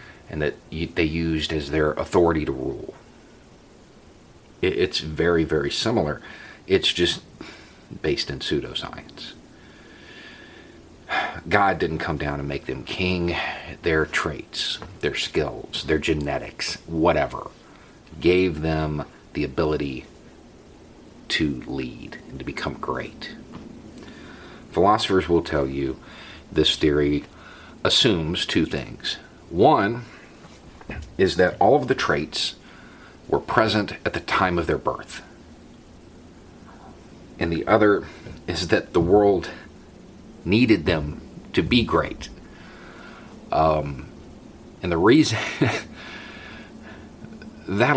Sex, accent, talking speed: male, American, 105 wpm